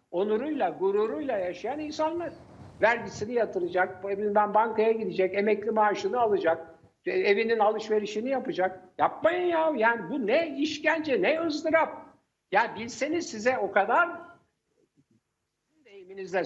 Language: Turkish